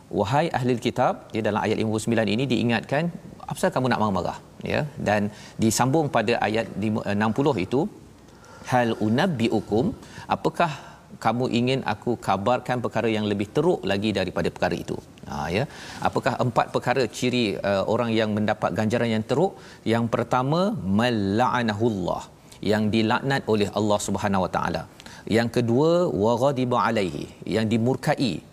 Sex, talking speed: male, 135 wpm